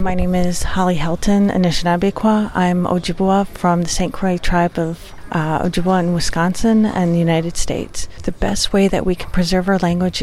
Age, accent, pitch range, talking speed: 40-59, American, 170-195 Hz, 180 wpm